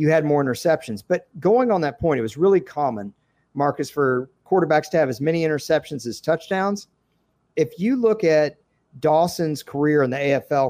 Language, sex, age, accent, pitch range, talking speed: English, male, 50-69, American, 135-170 Hz, 180 wpm